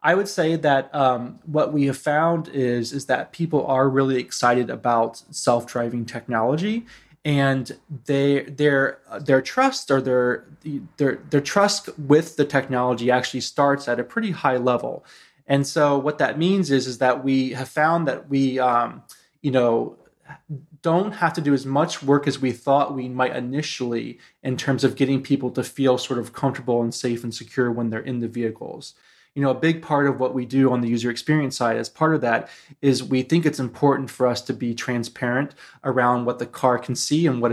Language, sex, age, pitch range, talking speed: English, male, 20-39, 125-145 Hz, 200 wpm